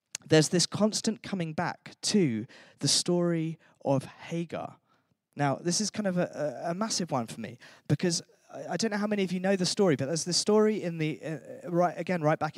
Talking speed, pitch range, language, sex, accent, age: 205 wpm, 150-210 Hz, English, male, British, 20-39